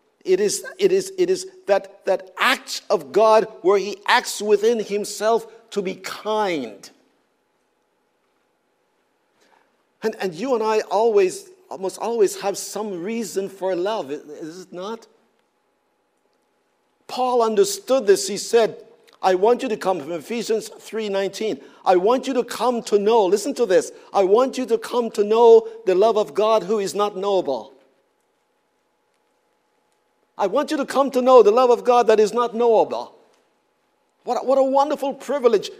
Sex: male